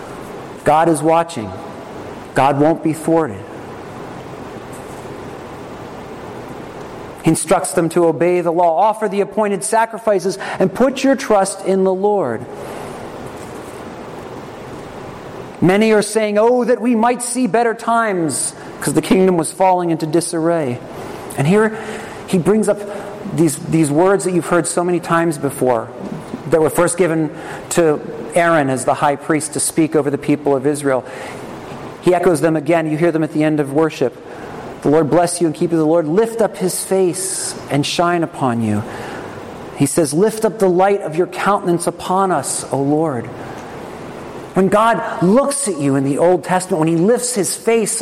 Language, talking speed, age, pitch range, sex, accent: English, 160 wpm, 40-59, 160-205 Hz, male, American